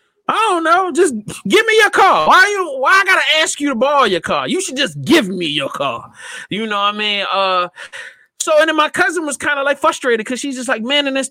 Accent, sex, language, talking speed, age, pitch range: American, male, English, 265 wpm, 30-49, 205-285 Hz